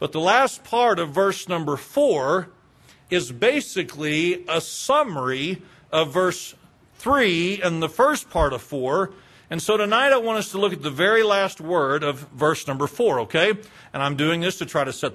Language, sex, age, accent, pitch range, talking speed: English, male, 40-59, American, 155-220 Hz, 185 wpm